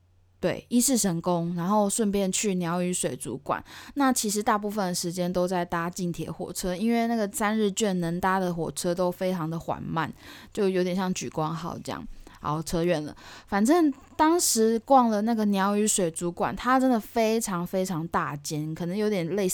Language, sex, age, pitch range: Chinese, female, 10-29, 175-235 Hz